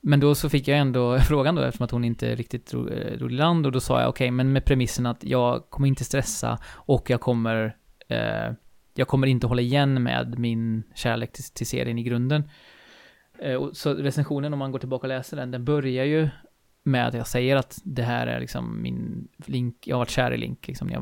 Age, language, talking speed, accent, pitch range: 20-39, Swedish, 230 wpm, native, 120-140 Hz